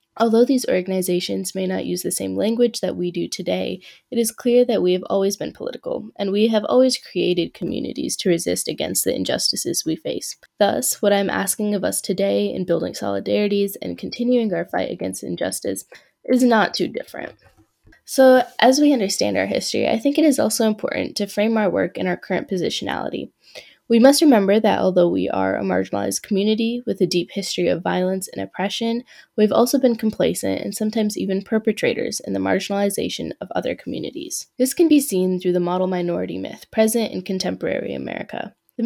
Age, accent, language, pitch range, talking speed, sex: 10-29, American, English, 175-235 Hz, 190 wpm, female